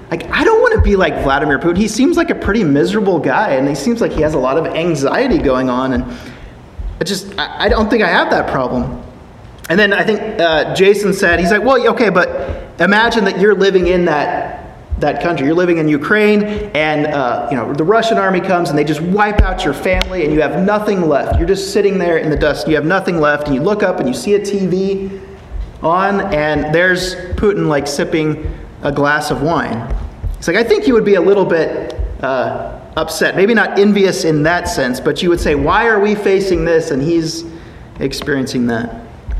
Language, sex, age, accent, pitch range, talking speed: English, male, 30-49, American, 150-205 Hz, 220 wpm